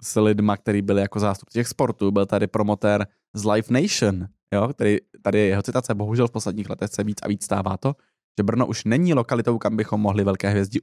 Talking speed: 215 wpm